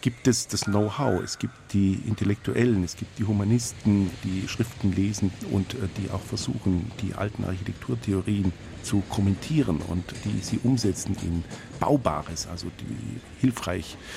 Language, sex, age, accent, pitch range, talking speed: German, male, 50-69, German, 90-115 Hz, 140 wpm